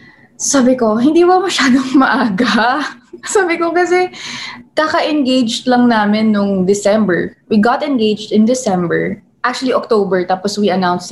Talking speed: 135 wpm